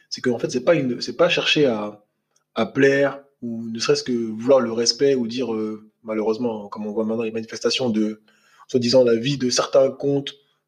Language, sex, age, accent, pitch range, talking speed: French, male, 20-39, French, 115-150 Hz, 195 wpm